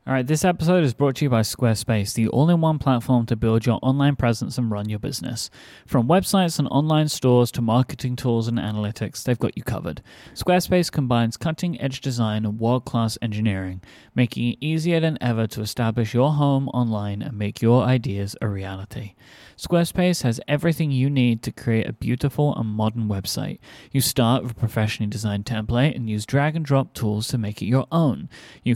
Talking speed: 185 wpm